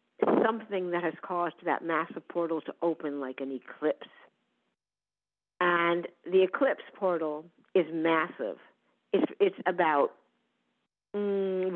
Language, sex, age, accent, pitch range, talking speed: English, female, 50-69, American, 160-190 Hz, 110 wpm